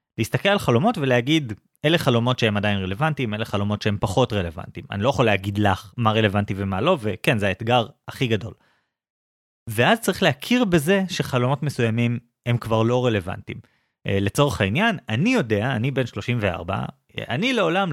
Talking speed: 155 wpm